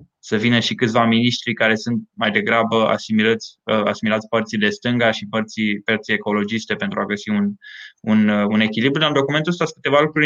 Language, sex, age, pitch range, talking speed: Romanian, male, 20-39, 115-140 Hz, 180 wpm